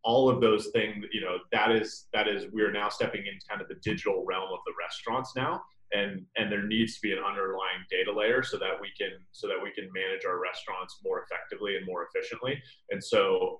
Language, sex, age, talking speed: English, male, 30-49, 225 wpm